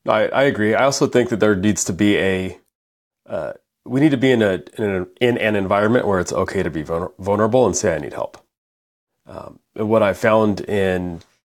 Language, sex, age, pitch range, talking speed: English, male, 30-49, 90-110 Hz, 215 wpm